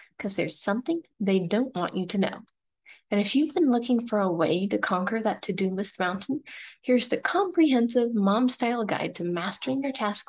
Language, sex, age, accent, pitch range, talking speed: English, female, 20-39, American, 195-265 Hz, 185 wpm